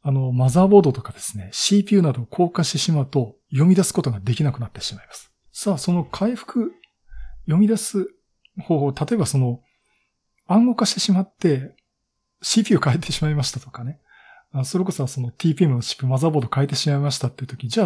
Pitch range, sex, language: 130-180 Hz, male, Japanese